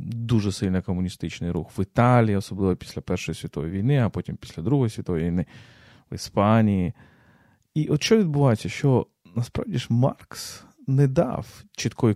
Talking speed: 150 wpm